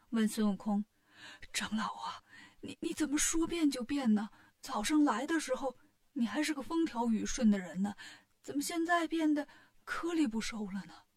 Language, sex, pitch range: Chinese, female, 205-300 Hz